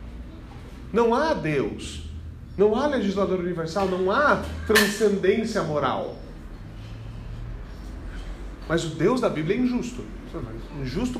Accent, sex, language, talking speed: Brazilian, male, Portuguese, 100 wpm